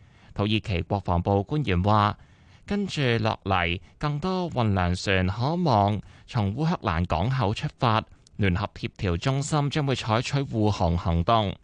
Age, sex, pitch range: 20-39, male, 95-125 Hz